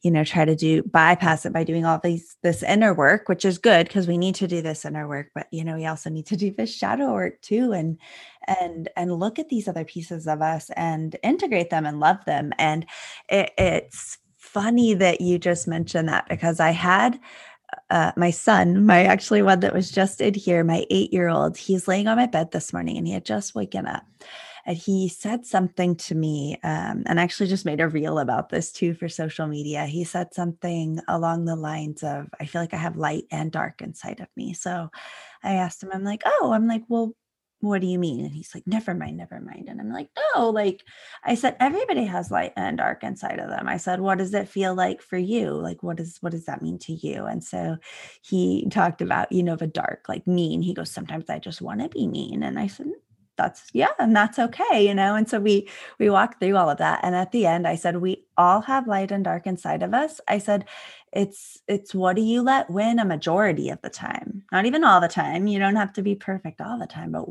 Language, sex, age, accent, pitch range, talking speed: English, female, 20-39, American, 165-210 Hz, 240 wpm